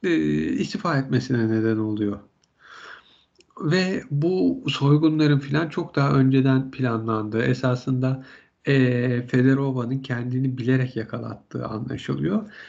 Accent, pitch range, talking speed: native, 130-165 Hz, 90 wpm